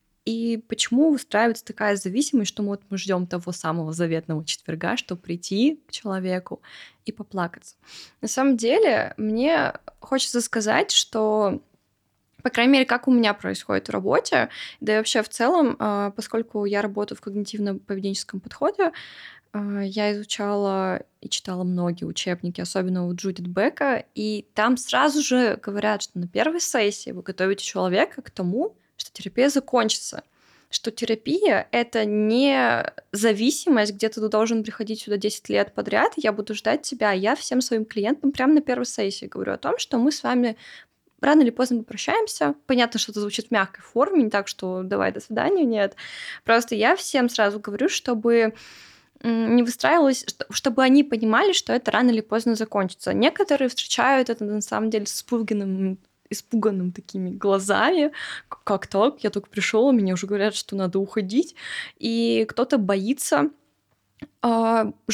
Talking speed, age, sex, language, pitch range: 155 wpm, 20-39, female, Russian, 205-255 Hz